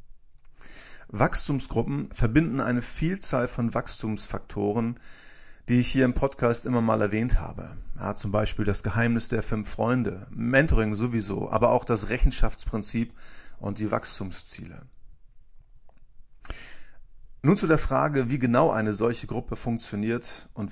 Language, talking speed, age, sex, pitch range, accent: German, 120 wpm, 40-59, male, 105-130 Hz, German